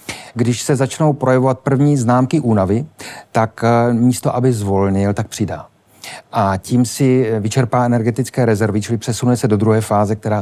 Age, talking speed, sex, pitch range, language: 40-59, 150 wpm, male, 105-125 Hz, Czech